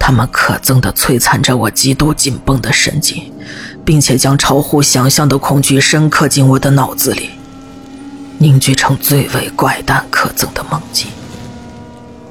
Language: Chinese